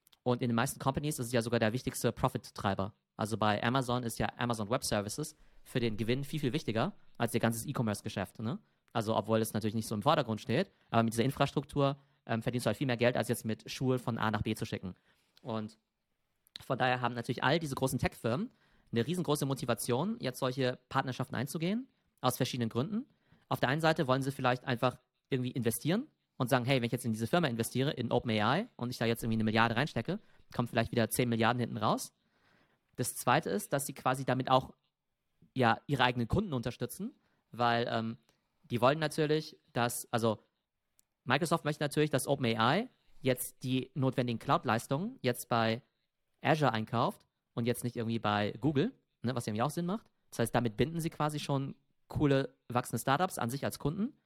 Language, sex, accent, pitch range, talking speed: German, male, German, 115-140 Hz, 195 wpm